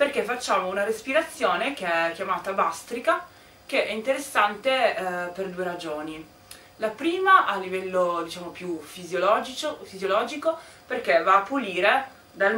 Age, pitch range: 20-39, 160-205 Hz